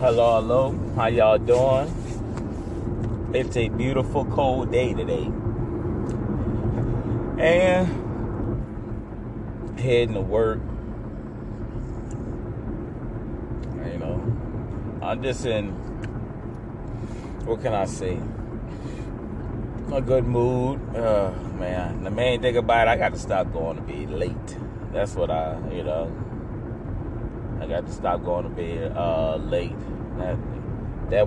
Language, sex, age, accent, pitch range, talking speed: English, male, 30-49, American, 110-120 Hz, 110 wpm